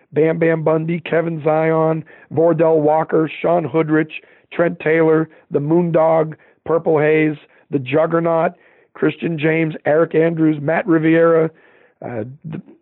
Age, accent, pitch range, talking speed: 50-69, American, 155-175 Hz, 120 wpm